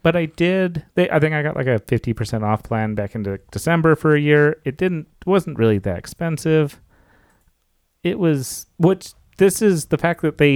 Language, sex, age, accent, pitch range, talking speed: English, male, 30-49, American, 105-150 Hz, 205 wpm